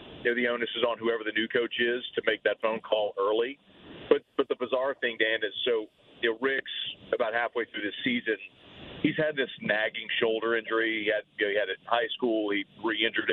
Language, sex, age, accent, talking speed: English, male, 40-59, American, 200 wpm